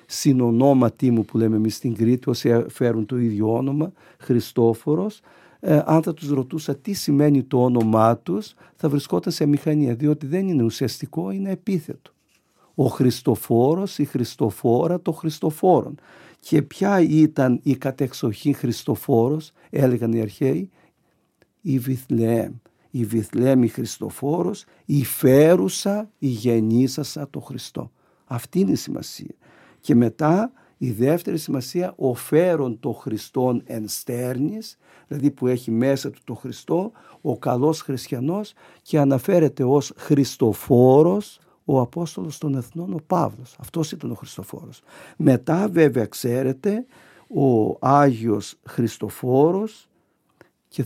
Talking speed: 125 wpm